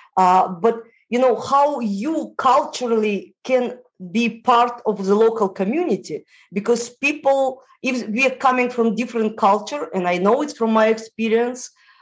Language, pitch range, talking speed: English, 200-250 Hz, 150 wpm